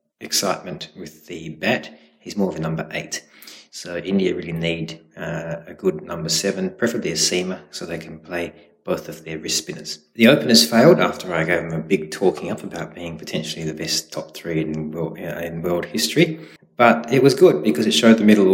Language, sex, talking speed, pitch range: English, male, 205 wpm, 80-110 Hz